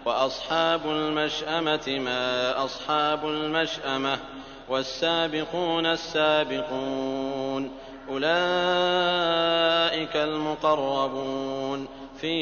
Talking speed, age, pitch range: 50 wpm, 40-59, 135-165 Hz